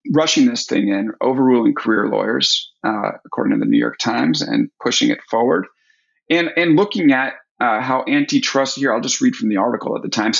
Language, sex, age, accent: English, male, 30-49, American